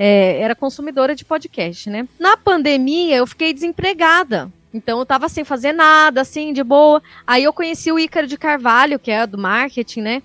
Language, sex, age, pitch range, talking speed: Portuguese, female, 20-39, 245-330 Hz, 180 wpm